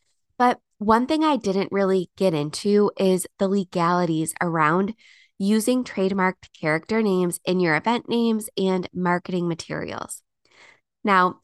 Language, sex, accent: English, female, American